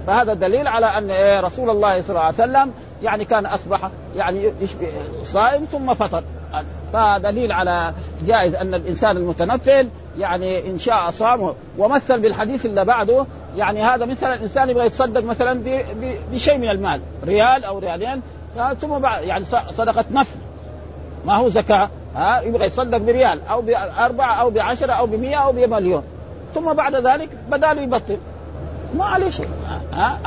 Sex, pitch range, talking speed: male, 195-260 Hz, 145 wpm